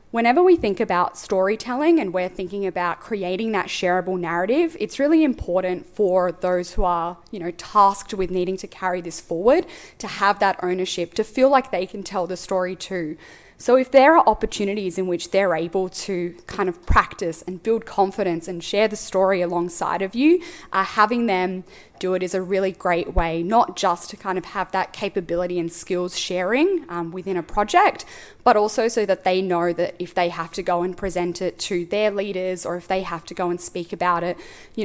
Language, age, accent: English, 10-29, Australian